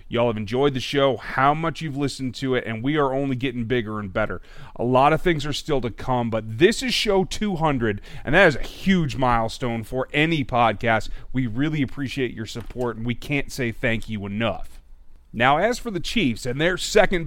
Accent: American